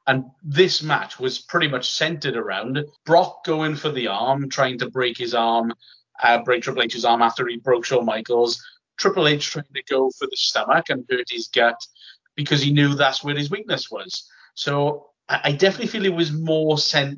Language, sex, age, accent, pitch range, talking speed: English, male, 30-49, British, 125-155 Hz, 200 wpm